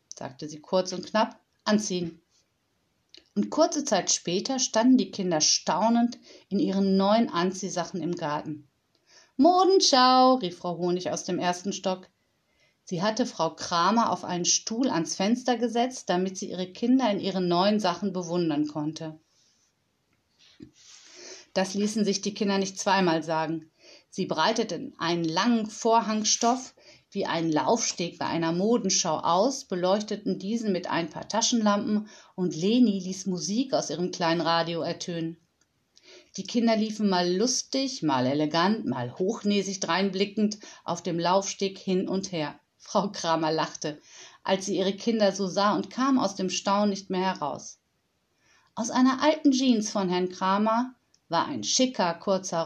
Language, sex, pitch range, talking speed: German, female, 170-225 Hz, 145 wpm